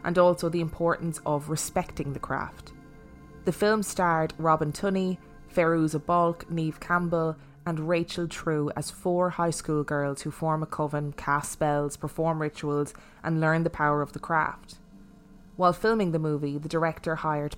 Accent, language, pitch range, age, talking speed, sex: Irish, English, 150-175 Hz, 20-39, 160 wpm, female